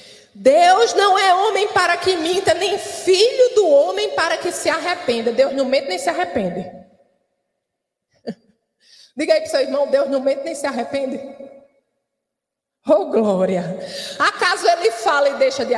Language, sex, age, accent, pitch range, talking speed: Portuguese, female, 20-39, Brazilian, 275-355 Hz, 155 wpm